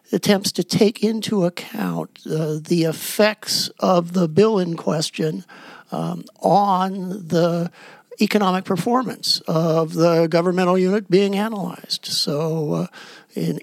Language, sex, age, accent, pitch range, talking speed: English, male, 60-79, American, 155-190 Hz, 120 wpm